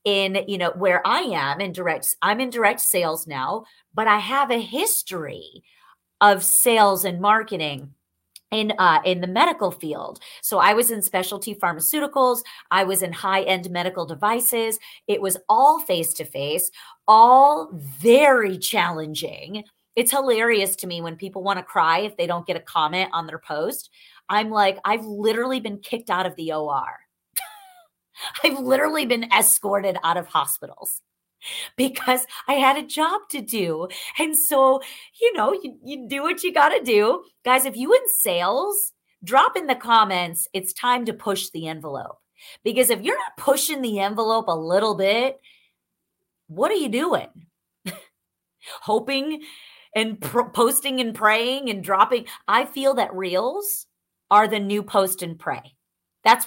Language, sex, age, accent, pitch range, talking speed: English, female, 30-49, American, 185-260 Hz, 160 wpm